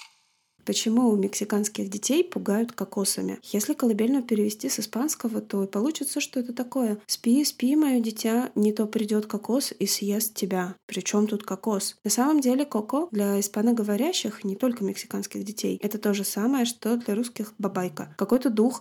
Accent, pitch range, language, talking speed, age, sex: native, 205-255 Hz, Russian, 165 wpm, 20-39, female